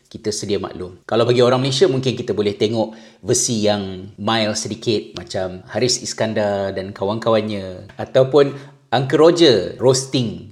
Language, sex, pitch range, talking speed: Malay, male, 110-140 Hz, 135 wpm